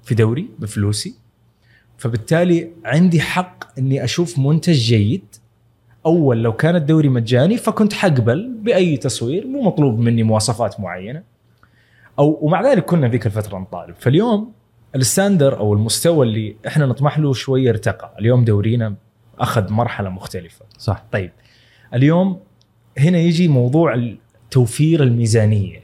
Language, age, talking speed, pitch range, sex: Arabic, 20-39, 125 wpm, 115-150 Hz, male